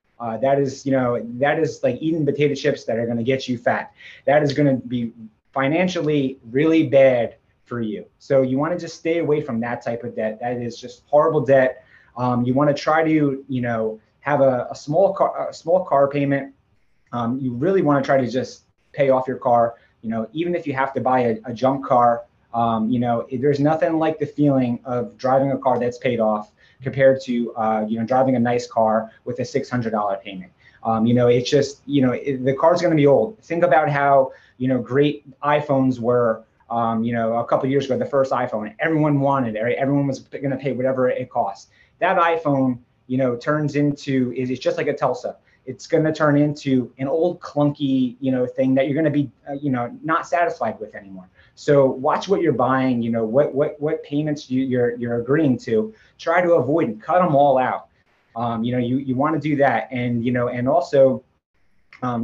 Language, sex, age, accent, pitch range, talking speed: English, male, 20-39, American, 120-145 Hz, 225 wpm